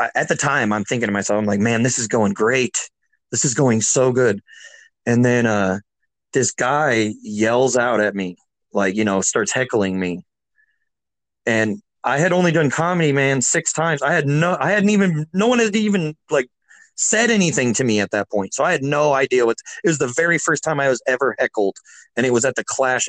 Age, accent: 30-49, American